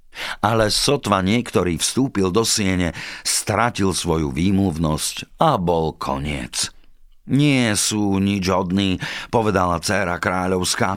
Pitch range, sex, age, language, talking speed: 80-110 Hz, male, 50-69, Slovak, 105 wpm